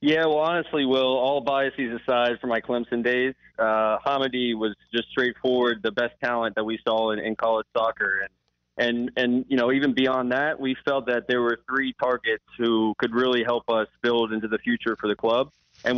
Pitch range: 110-130 Hz